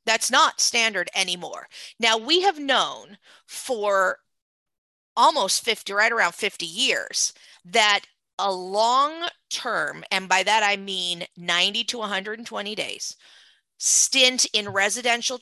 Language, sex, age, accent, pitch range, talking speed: English, female, 40-59, American, 195-250 Hz, 115 wpm